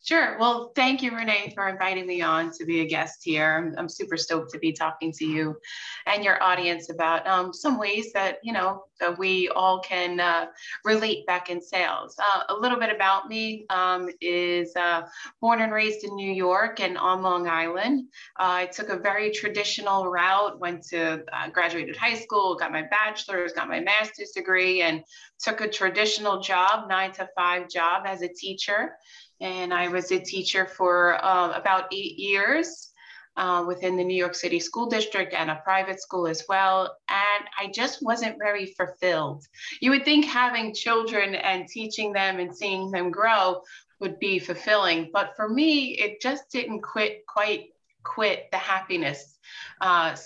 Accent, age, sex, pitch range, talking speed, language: American, 20-39, female, 175-215 Hz, 175 wpm, English